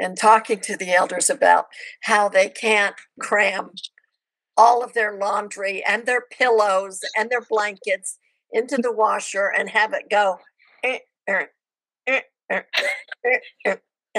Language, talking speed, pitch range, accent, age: English, 145 wpm, 185-250 Hz, American, 60-79